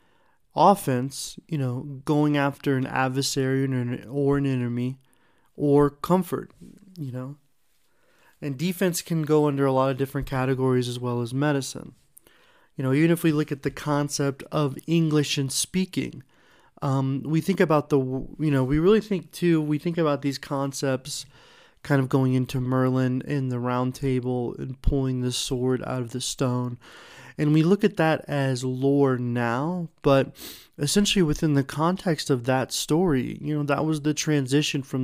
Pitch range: 130-150 Hz